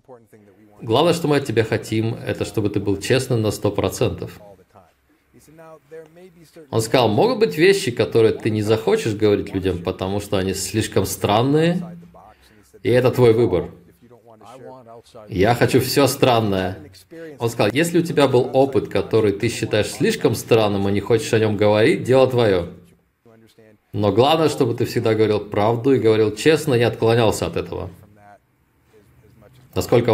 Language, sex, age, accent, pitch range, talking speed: Russian, male, 20-39, native, 105-130 Hz, 145 wpm